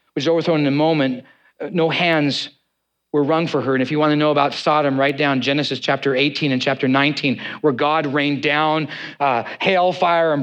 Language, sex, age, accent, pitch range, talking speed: English, male, 40-59, American, 130-160 Hz, 200 wpm